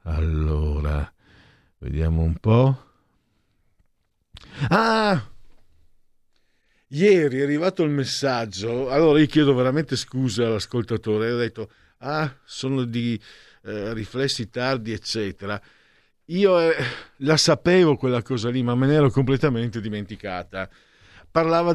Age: 50-69